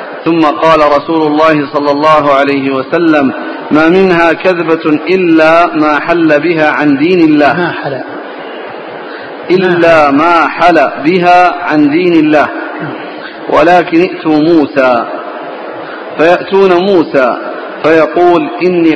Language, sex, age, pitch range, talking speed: Arabic, male, 50-69, 155-185 Hz, 100 wpm